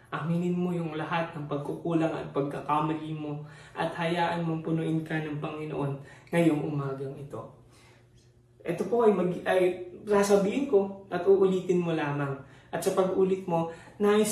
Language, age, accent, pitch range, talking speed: English, 20-39, Filipino, 140-185 Hz, 145 wpm